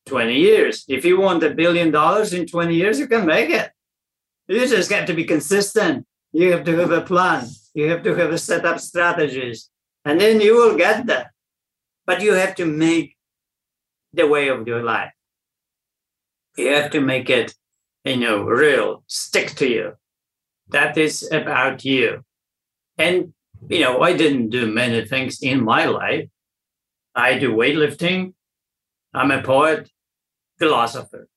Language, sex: English, male